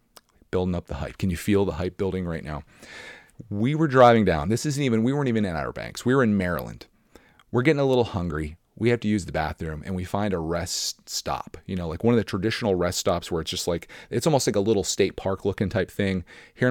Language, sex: English, male